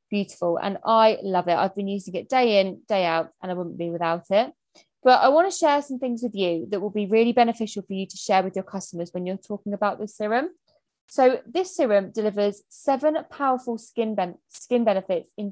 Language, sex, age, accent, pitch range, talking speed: English, female, 20-39, British, 190-255 Hz, 220 wpm